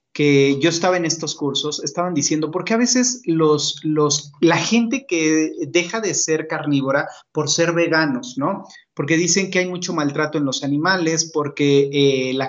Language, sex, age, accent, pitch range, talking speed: Spanish, male, 30-49, Mexican, 140-170 Hz, 165 wpm